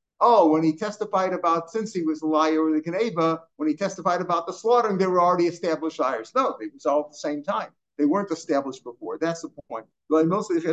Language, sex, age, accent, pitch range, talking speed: English, male, 50-69, American, 155-200 Hz, 225 wpm